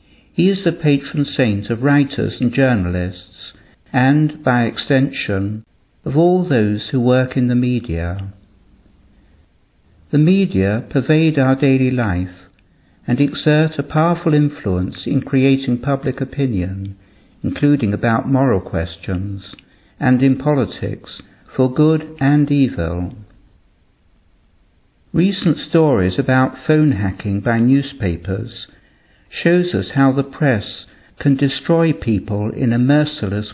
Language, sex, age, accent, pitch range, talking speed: English, male, 60-79, British, 100-145 Hz, 115 wpm